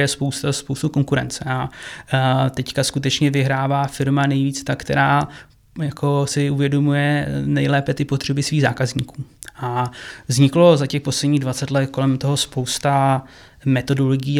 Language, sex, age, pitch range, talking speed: Czech, male, 20-39, 130-145 Hz, 125 wpm